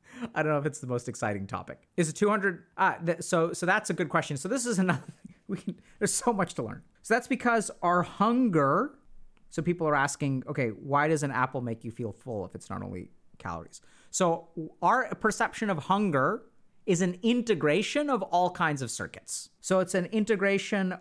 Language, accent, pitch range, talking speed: English, American, 150-200 Hz, 205 wpm